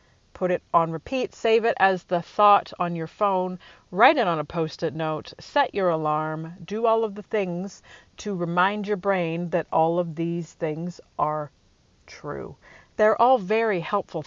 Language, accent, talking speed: English, American, 170 wpm